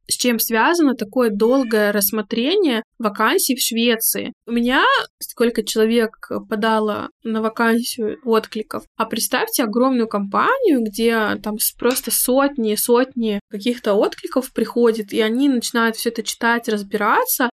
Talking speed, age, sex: 125 wpm, 20-39, female